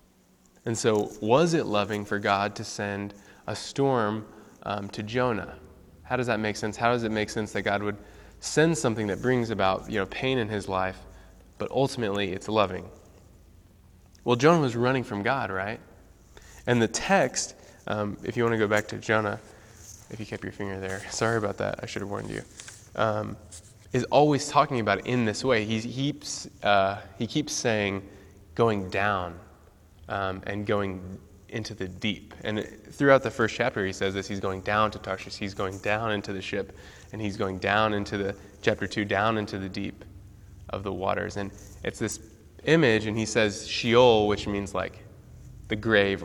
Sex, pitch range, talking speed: male, 100-110 Hz, 190 wpm